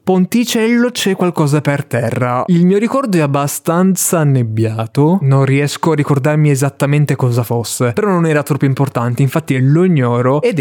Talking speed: 155 wpm